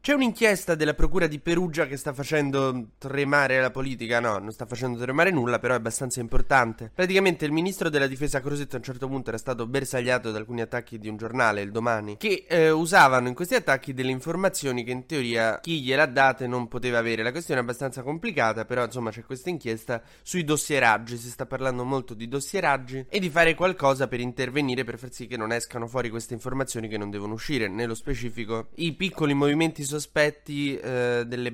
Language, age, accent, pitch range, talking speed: Italian, 20-39, native, 120-145 Hz, 205 wpm